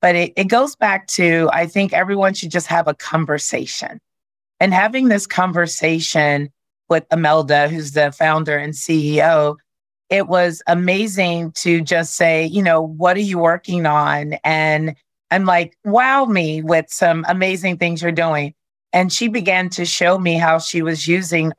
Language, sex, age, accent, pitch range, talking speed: English, female, 40-59, American, 165-205 Hz, 165 wpm